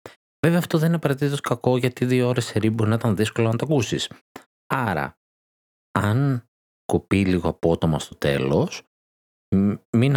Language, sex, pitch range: Greek, male, 80-125 Hz